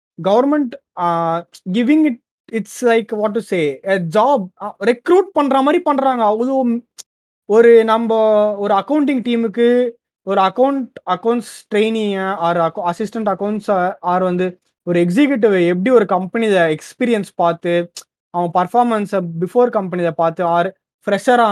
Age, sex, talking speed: 20-39, male, 115 wpm